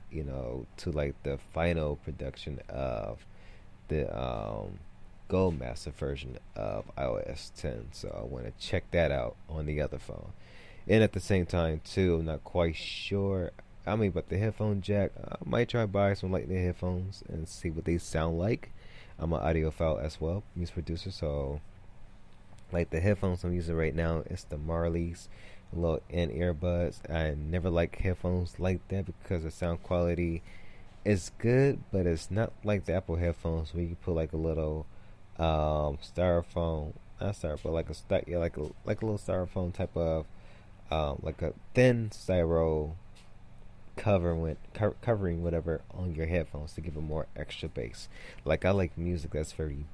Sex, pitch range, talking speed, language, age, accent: male, 80-95 Hz, 175 wpm, English, 30-49, American